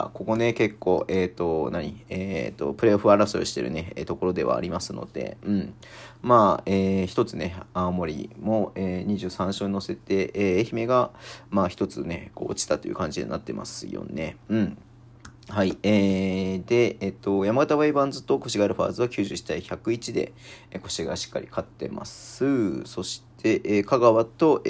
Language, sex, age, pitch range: Japanese, male, 40-59, 95-125 Hz